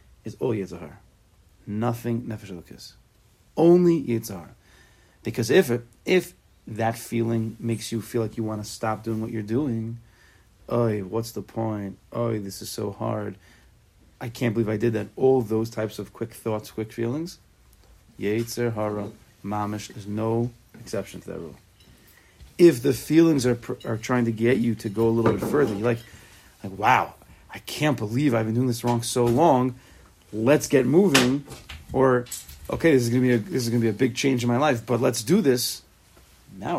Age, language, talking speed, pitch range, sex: 30-49, English, 185 wpm, 105-130 Hz, male